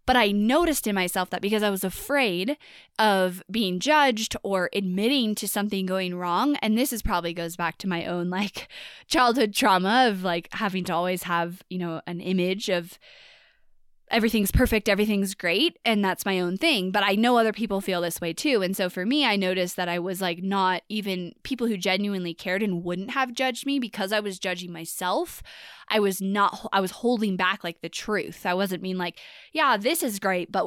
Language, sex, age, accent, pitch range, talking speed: English, female, 20-39, American, 180-220 Hz, 205 wpm